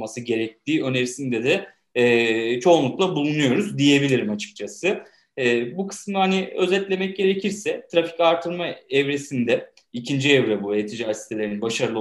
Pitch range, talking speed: 120-165 Hz, 115 wpm